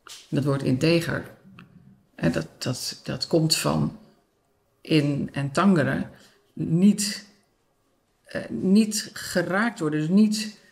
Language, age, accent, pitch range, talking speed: English, 50-69, Dutch, 140-180 Hz, 105 wpm